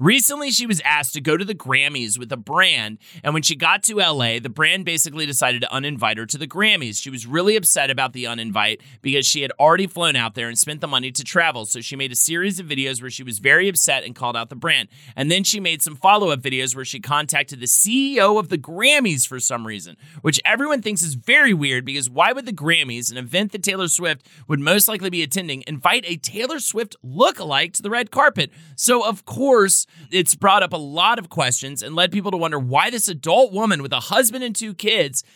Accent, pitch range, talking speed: American, 140-195 Hz, 235 wpm